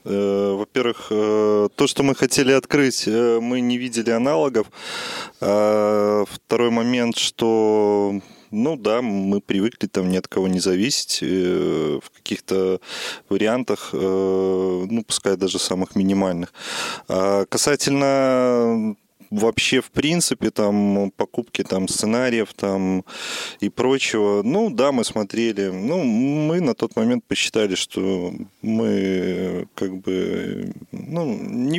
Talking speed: 110 wpm